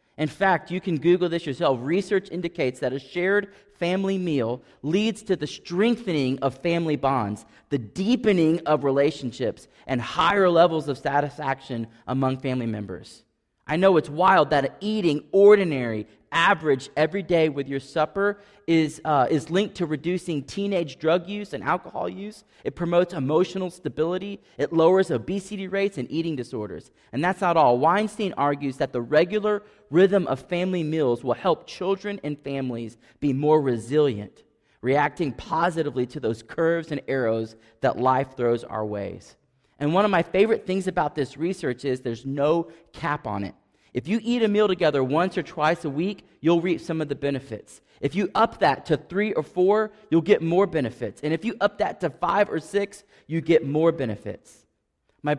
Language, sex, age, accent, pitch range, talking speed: English, male, 30-49, American, 125-180 Hz, 175 wpm